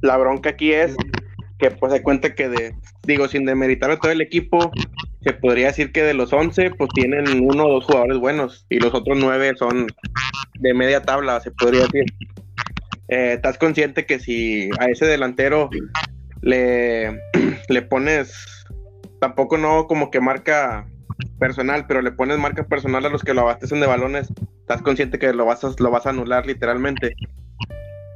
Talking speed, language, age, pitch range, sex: 175 wpm, Spanish, 20-39, 120-140 Hz, male